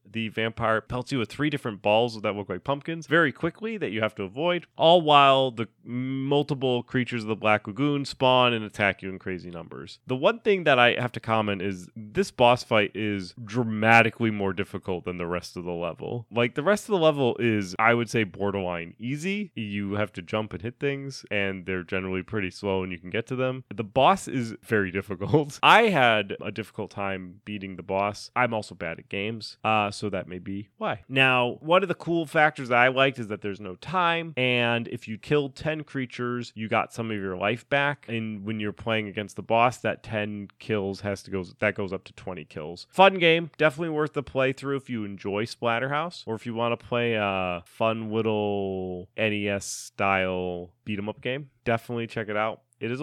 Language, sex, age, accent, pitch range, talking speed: English, male, 30-49, American, 100-130 Hz, 210 wpm